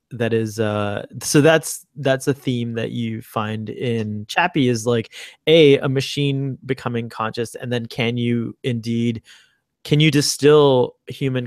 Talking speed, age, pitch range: 150 wpm, 20-39, 105-120 Hz